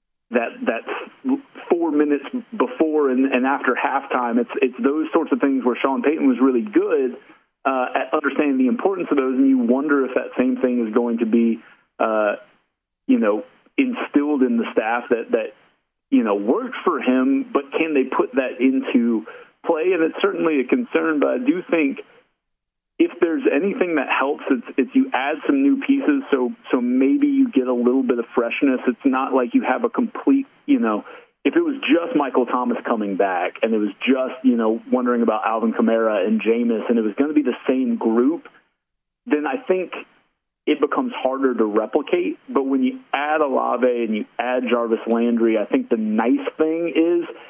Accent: American